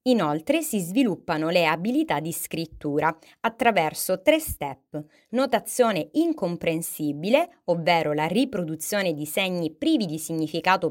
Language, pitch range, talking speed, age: Italian, 155-245 Hz, 110 wpm, 30-49